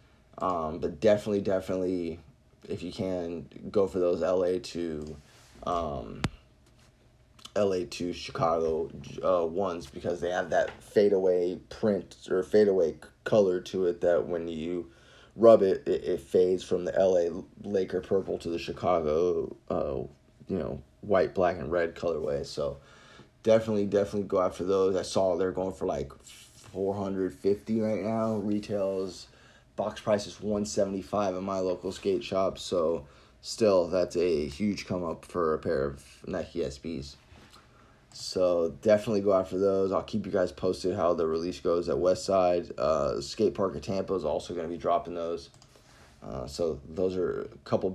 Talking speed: 160 wpm